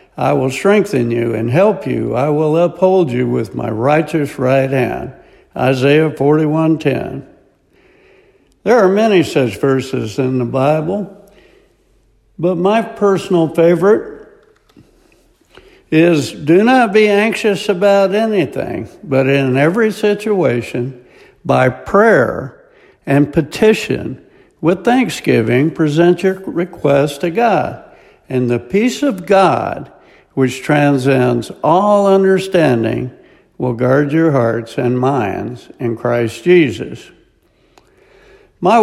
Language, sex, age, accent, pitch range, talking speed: English, male, 60-79, American, 135-200 Hz, 110 wpm